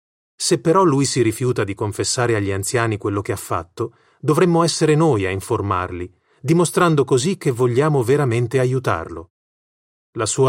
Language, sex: Italian, male